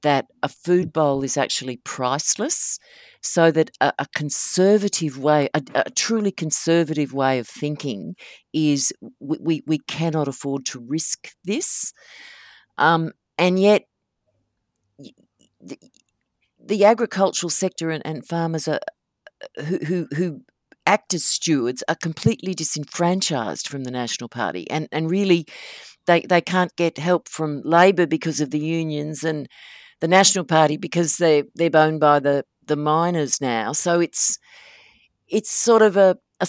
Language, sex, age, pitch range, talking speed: English, female, 50-69, 135-175 Hz, 145 wpm